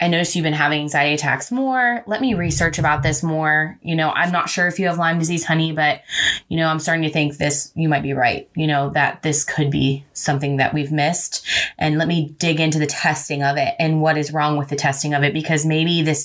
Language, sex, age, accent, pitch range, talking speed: English, female, 20-39, American, 150-170 Hz, 250 wpm